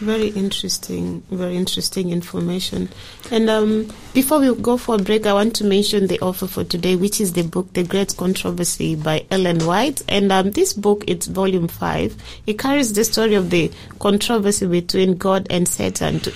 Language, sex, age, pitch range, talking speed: English, female, 30-49, 175-205 Hz, 185 wpm